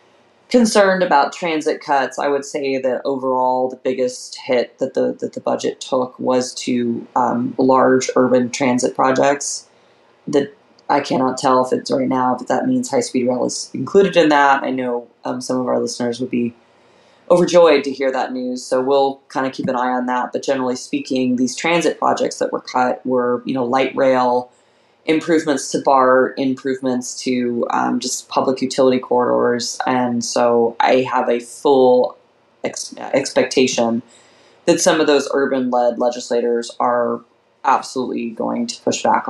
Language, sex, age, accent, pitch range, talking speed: English, female, 20-39, American, 125-145 Hz, 170 wpm